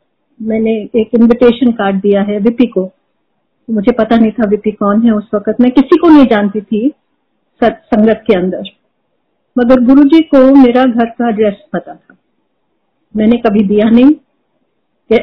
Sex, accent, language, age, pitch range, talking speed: female, native, Hindi, 50-69, 220-275 Hz, 155 wpm